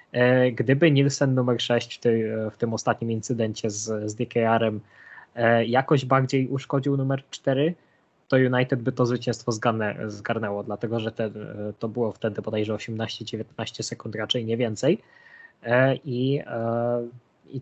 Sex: male